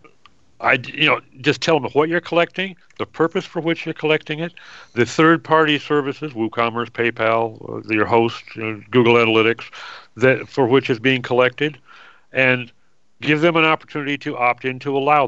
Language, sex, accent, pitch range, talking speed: English, male, American, 120-155 Hz, 170 wpm